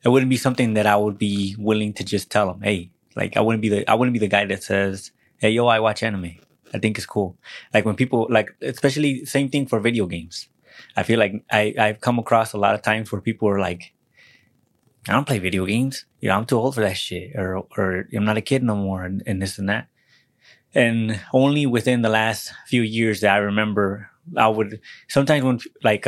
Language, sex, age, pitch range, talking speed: English, male, 20-39, 100-115 Hz, 230 wpm